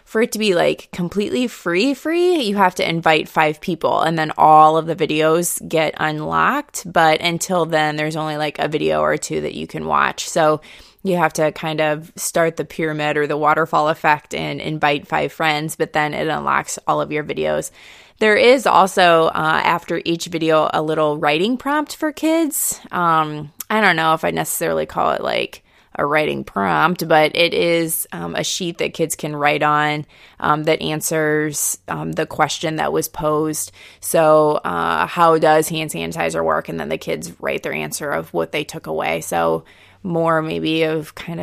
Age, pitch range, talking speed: 20-39, 150-180 Hz, 190 wpm